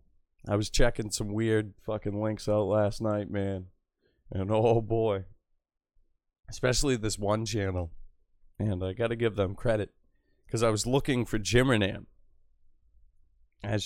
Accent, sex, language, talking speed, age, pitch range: American, male, English, 135 wpm, 30-49, 95-120 Hz